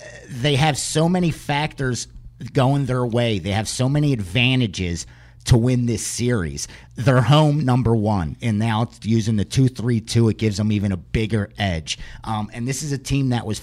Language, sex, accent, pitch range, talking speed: English, male, American, 100-130 Hz, 190 wpm